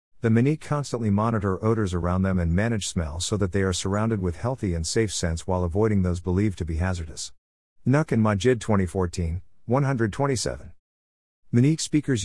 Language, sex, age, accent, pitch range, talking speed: English, male, 50-69, American, 90-120 Hz, 165 wpm